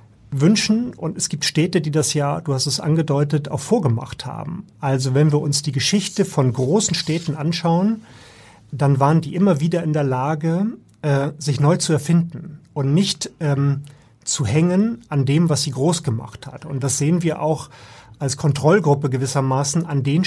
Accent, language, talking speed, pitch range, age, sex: German, German, 180 wpm, 140-170 Hz, 30-49, male